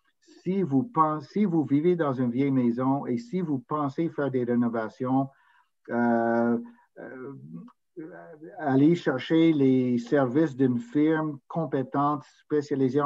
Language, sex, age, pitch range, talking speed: French, male, 60-79, 120-140 Hz, 115 wpm